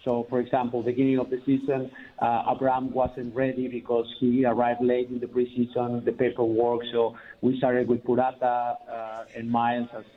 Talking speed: 170 wpm